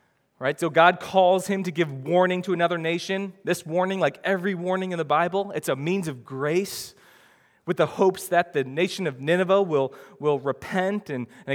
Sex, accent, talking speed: male, American, 190 wpm